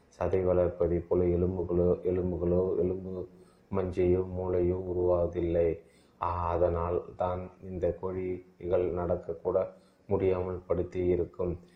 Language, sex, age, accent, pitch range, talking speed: Tamil, male, 20-39, native, 85-95 Hz, 85 wpm